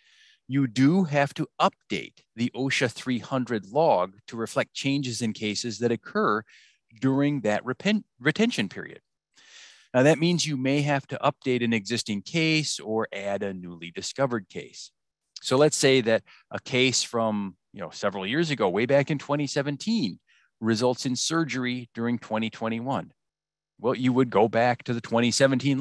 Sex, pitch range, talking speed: male, 110-135 Hz, 150 wpm